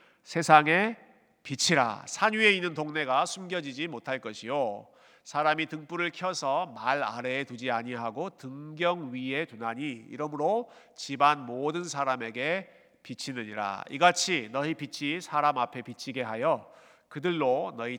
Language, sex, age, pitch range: Korean, male, 40-59, 140-210 Hz